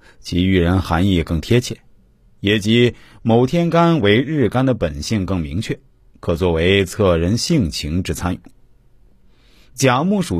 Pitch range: 85-125 Hz